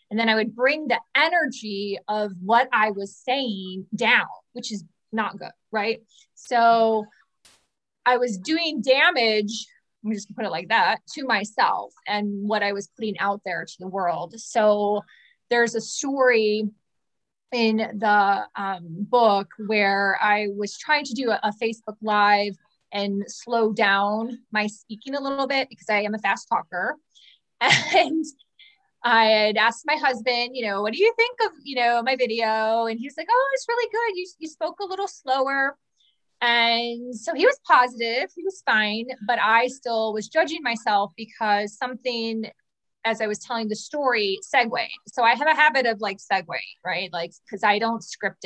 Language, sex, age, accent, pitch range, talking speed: English, female, 20-39, American, 205-255 Hz, 175 wpm